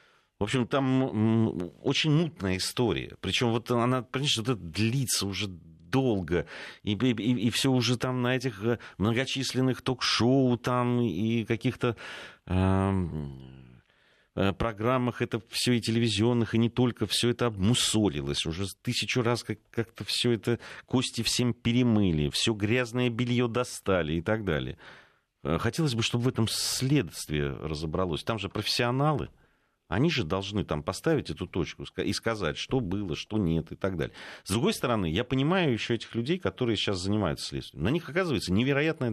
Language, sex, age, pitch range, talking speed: Russian, male, 40-59, 95-125 Hz, 150 wpm